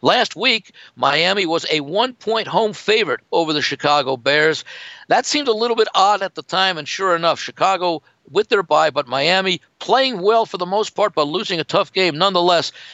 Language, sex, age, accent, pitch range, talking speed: English, male, 60-79, American, 145-195 Hz, 195 wpm